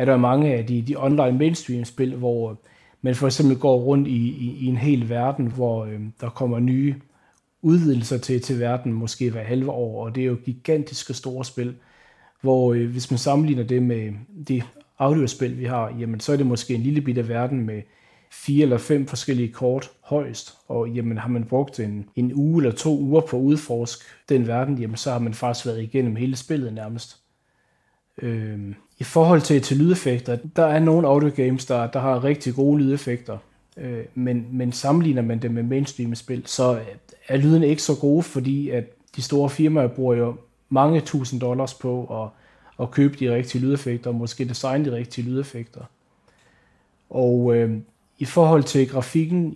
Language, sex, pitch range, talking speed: Danish, male, 120-140 Hz, 185 wpm